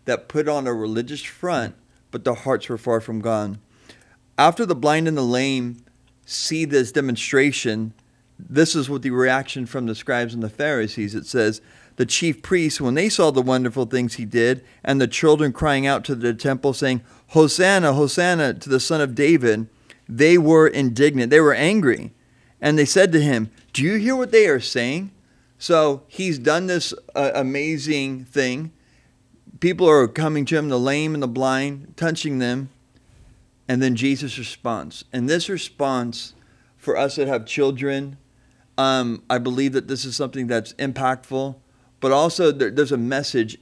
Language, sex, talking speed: English, male, 170 wpm